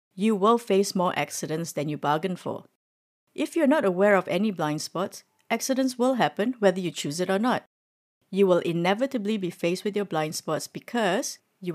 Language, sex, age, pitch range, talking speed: English, female, 60-79, 170-220 Hz, 190 wpm